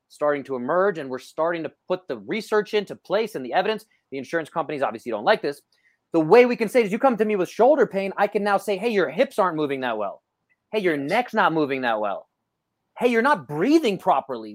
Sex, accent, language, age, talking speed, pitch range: male, American, English, 30-49, 240 wpm, 150-215 Hz